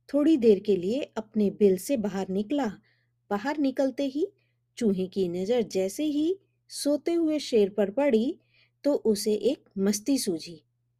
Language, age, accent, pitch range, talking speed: Hindi, 50-69, native, 170-260 Hz, 145 wpm